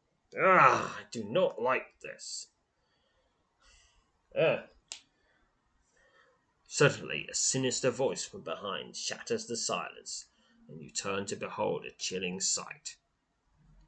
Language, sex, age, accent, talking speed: English, male, 30-49, British, 105 wpm